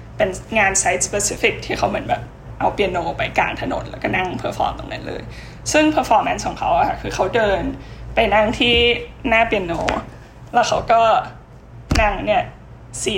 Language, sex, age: Thai, female, 10-29